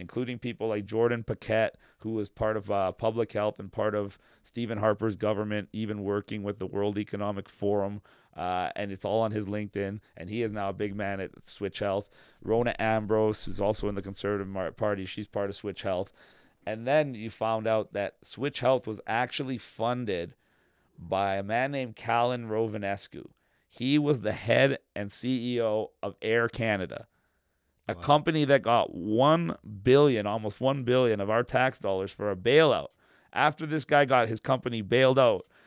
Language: English